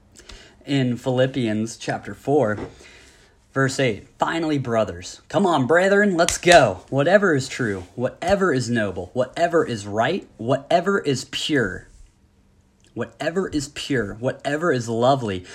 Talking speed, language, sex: 120 wpm, English, male